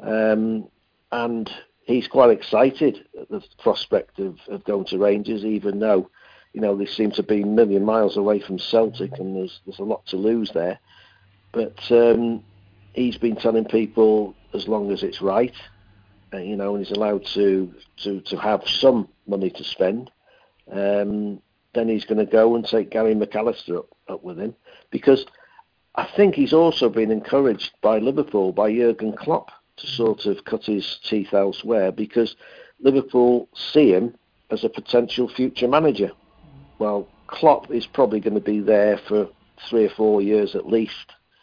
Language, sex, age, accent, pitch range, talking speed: English, male, 60-79, British, 100-115 Hz, 170 wpm